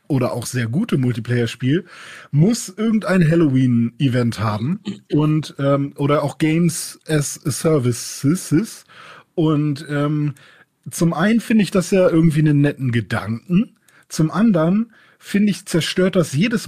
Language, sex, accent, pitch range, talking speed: German, male, German, 140-175 Hz, 130 wpm